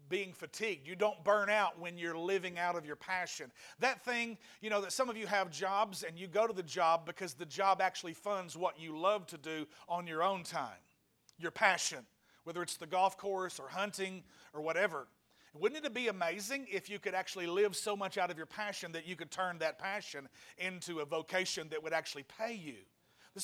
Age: 40-59